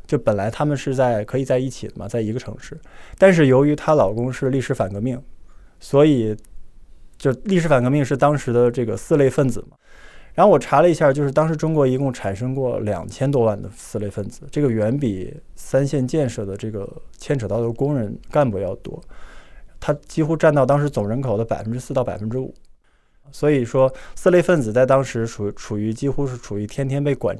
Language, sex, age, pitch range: Chinese, male, 20-39, 110-145 Hz